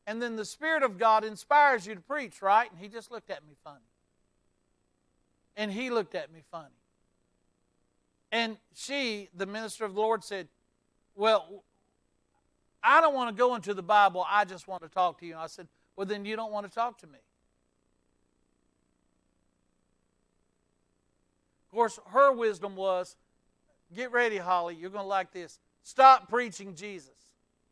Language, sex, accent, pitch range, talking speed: English, male, American, 165-215 Hz, 165 wpm